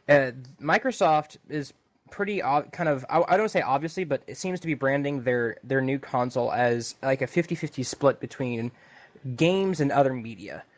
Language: English